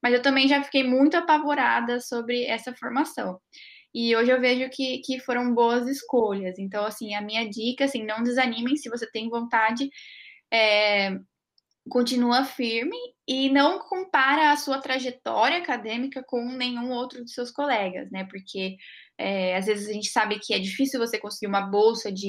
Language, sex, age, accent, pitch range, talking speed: Portuguese, female, 10-29, Brazilian, 225-275 Hz, 165 wpm